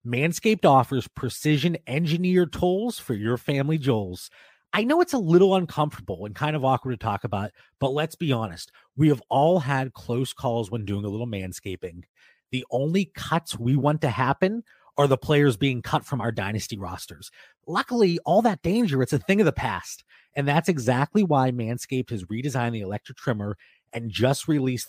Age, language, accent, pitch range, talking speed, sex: 30-49, English, American, 115-165 Hz, 185 wpm, male